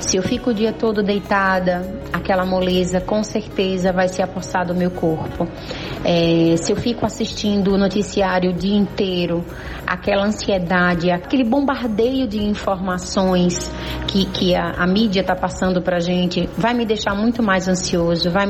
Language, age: Portuguese, 30-49